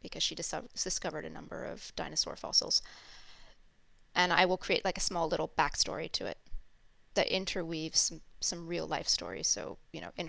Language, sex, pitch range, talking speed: English, female, 160-195 Hz, 175 wpm